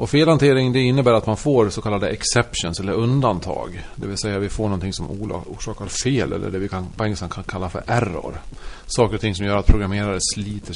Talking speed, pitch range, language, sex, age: 220 wpm, 95-120 Hz, Swedish, male, 40-59